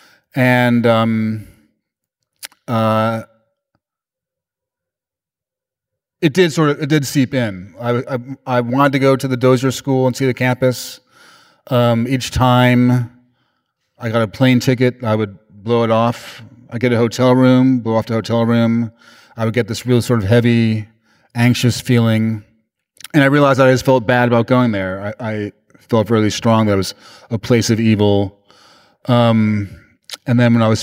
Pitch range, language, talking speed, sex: 110-130 Hz, English, 170 wpm, male